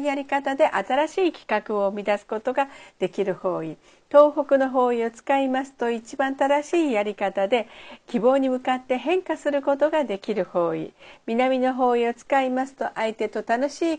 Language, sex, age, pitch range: Japanese, female, 50-69, 210-285 Hz